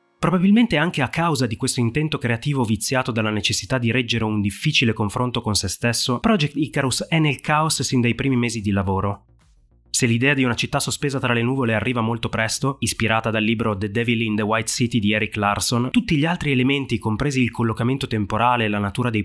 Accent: native